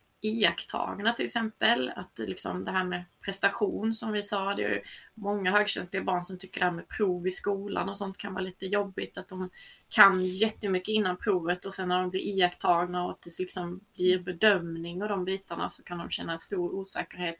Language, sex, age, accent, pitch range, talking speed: Swedish, female, 20-39, native, 185-210 Hz, 205 wpm